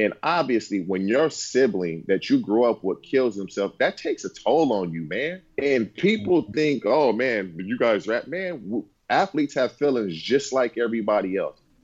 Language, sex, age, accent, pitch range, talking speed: English, male, 30-49, American, 105-150 Hz, 175 wpm